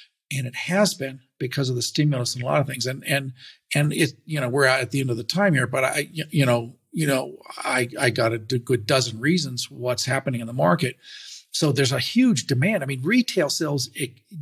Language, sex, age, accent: English, male, 50-69, American